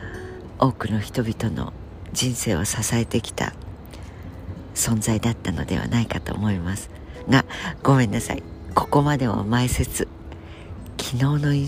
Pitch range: 85-120 Hz